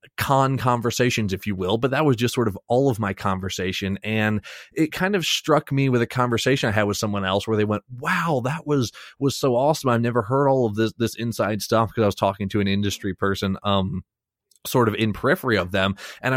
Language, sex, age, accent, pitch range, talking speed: English, male, 20-39, American, 105-130 Hz, 230 wpm